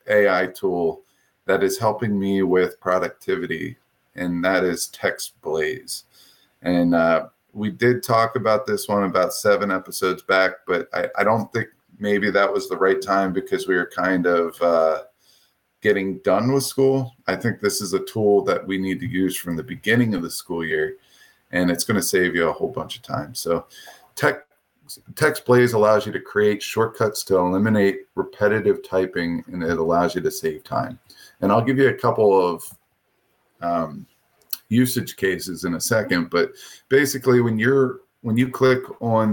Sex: male